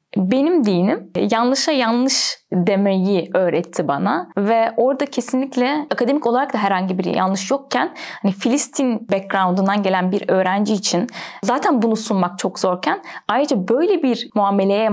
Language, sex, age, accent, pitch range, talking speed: Turkish, female, 10-29, native, 195-260 Hz, 135 wpm